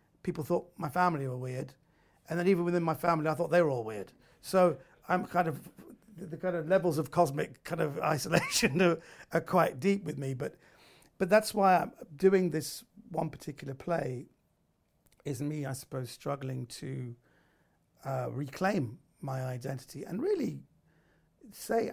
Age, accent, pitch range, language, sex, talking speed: 50-69, British, 140-180 Hz, English, male, 165 wpm